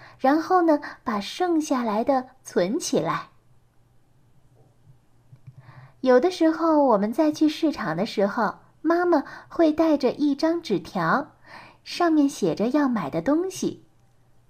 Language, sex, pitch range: Chinese, female, 205-305 Hz